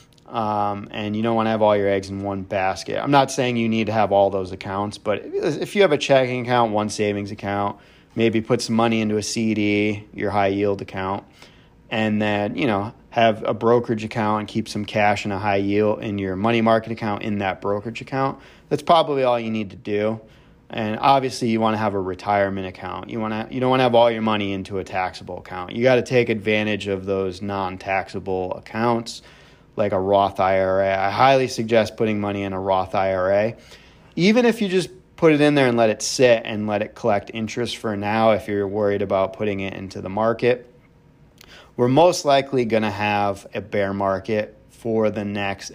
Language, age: English, 30-49